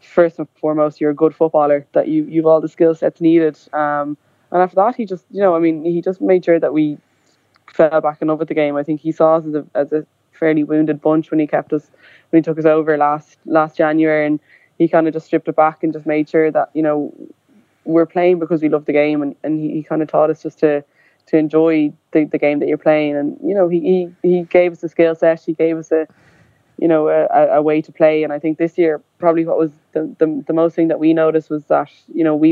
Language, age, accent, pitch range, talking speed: English, 20-39, Irish, 150-160 Hz, 270 wpm